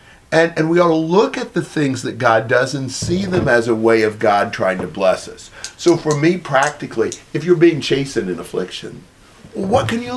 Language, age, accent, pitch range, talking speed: English, 50-69, American, 105-150 Hz, 220 wpm